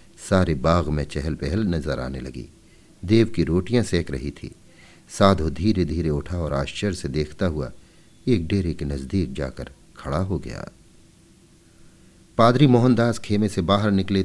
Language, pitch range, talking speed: Hindi, 80-110 Hz, 155 wpm